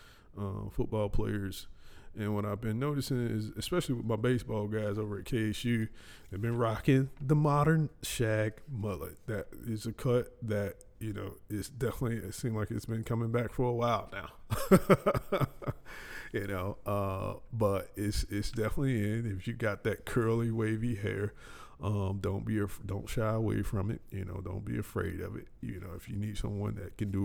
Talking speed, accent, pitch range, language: 185 wpm, American, 95-115 Hz, English